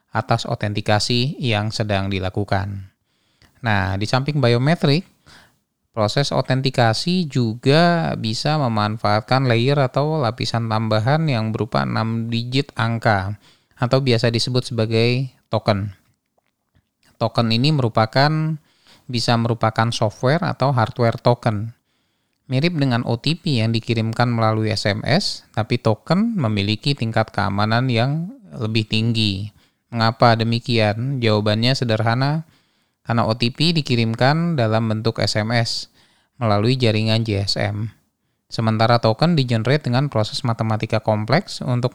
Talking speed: 105 wpm